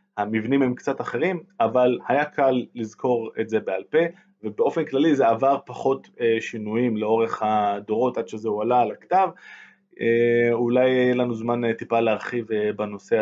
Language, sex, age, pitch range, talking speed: Hebrew, male, 20-39, 115-155 Hz, 145 wpm